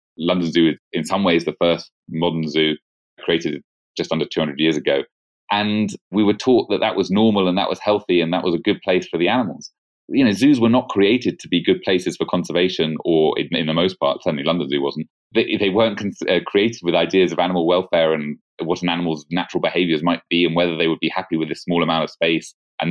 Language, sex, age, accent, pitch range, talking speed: English, male, 30-49, British, 85-110 Hz, 240 wpm